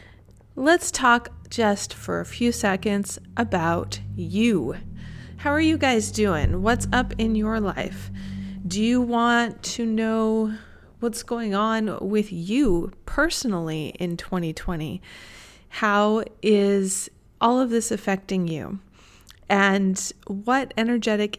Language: English